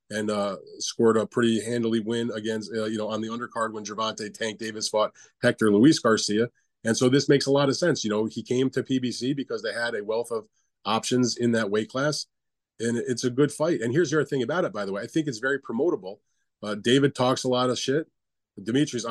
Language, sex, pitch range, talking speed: English, male, 115-145 Hz, 235 wpm